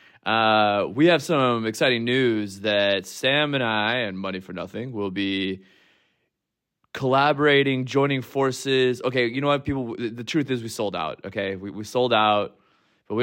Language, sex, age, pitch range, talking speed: English, male, 20-39, 100-135 Hz, 170 wpm